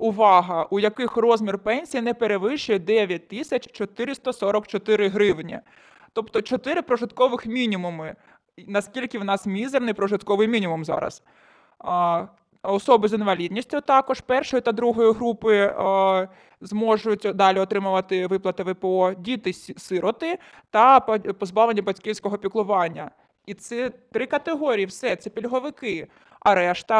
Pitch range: 190-235 Hz